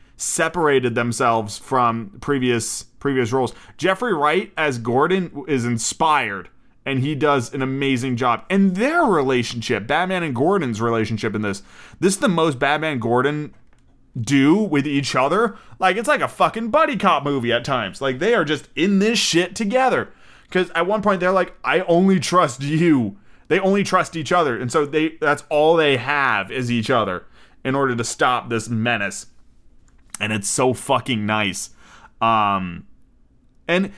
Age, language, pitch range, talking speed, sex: 30-49, English, 120-160 Hz, 165 wpm, male